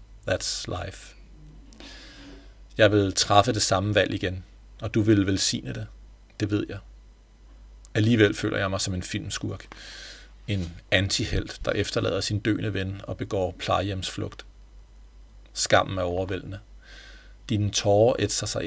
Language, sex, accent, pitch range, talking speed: Danish, male, native, 95-110 Hz, 130 wpm